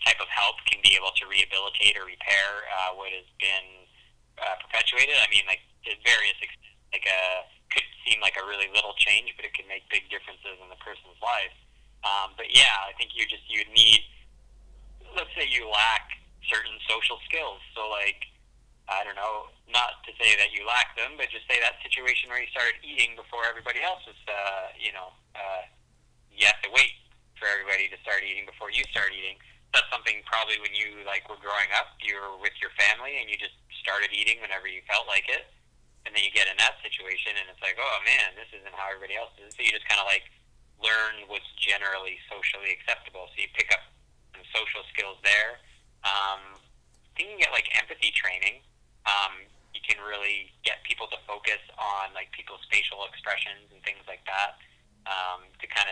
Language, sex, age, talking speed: English, male, 30-49, 200 wpm